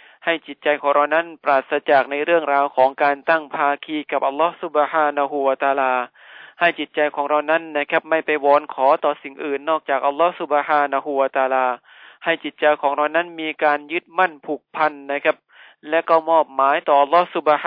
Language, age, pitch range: Thai, 20-39, 140-160 Hz